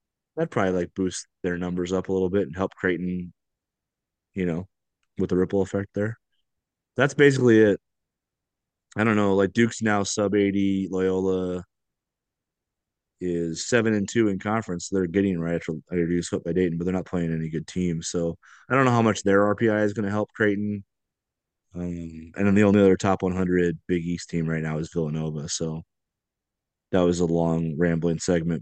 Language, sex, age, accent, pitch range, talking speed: English, male, 20-39, American, 85-110 Hz, 180 wpm